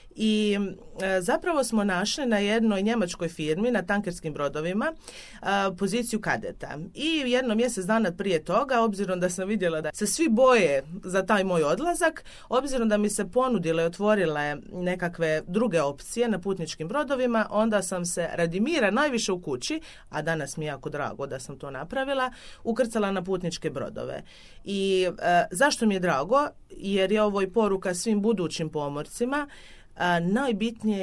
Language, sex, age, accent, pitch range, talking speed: Croatian, female, 30-49, native, 170-230 Hz, 160 wpm